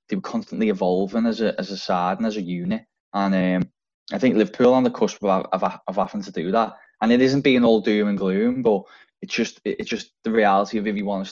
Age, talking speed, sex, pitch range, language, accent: 10-29, 255 wpm, male, 95-115 Hz, English, British